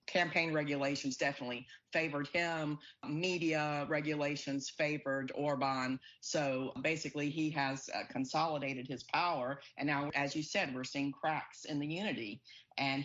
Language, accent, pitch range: English, American, 135-165 Hz